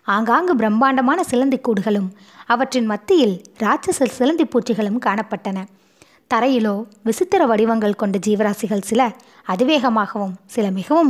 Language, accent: Tamil, native